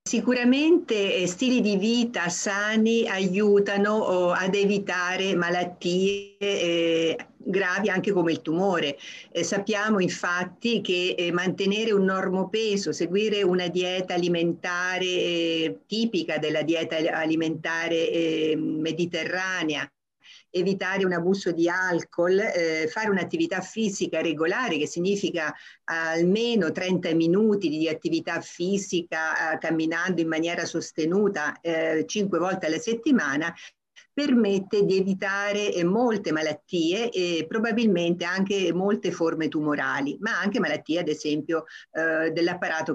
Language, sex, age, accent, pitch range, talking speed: Italian, female, 50-69, native, 165-200 Hz, 110 wpm